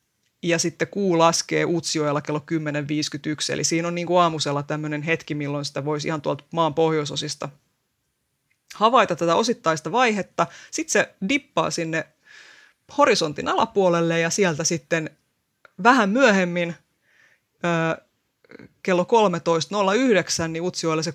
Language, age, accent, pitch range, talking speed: Finnish, 30-49, native, 155-180 Hz, 120 wpm